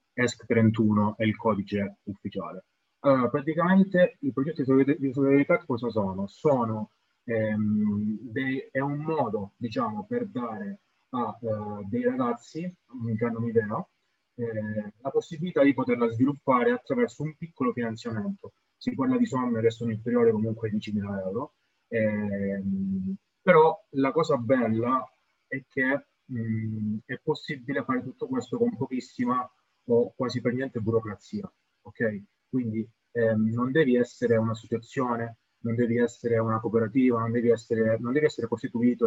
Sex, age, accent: male, 30-49, native